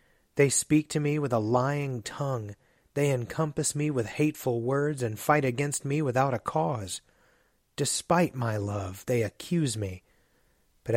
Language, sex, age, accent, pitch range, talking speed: English, male, 30-49, American, 110-140 Hz, 155 wpm